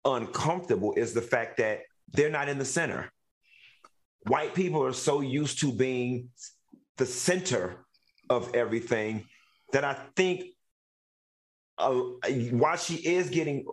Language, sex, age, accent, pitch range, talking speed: English, male, 40-59, American, 120-160 Hz, 125 wpm